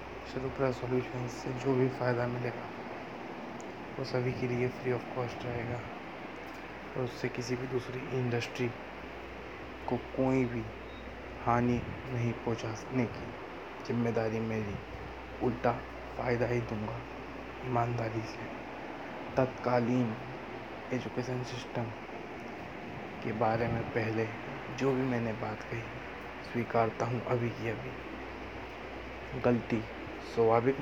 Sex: male